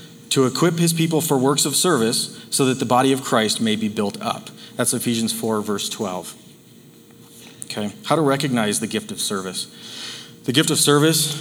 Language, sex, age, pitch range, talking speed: English, male, 30-49, 115-150 Hz, 185 wpm